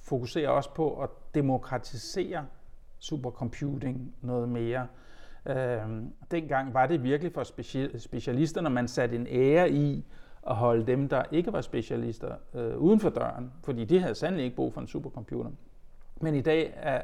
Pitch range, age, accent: 120-140 Hz, 60-79, native